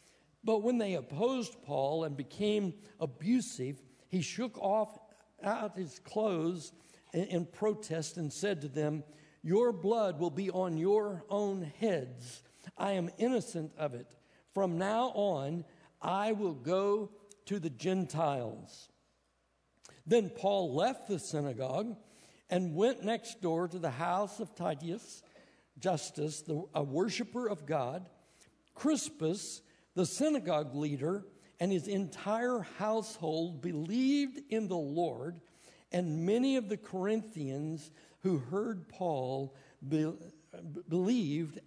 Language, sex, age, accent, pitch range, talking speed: English, male, 60-79, American, 160-215 Hz, 120 wpm